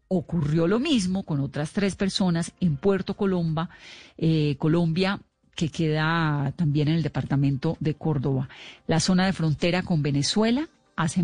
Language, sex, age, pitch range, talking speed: Spanish, female, 40-59, 155-195 Hz, 145 wpm